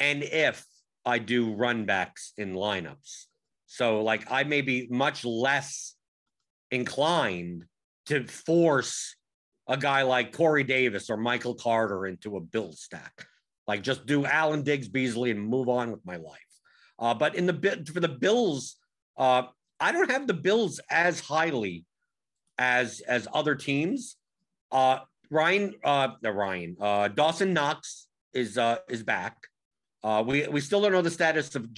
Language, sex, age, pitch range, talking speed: English, male, 50-69, 120-155 Hz, 155 wpm